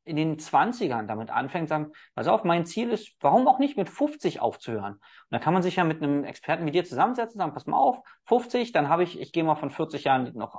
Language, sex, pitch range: German, male, 140-185 Hz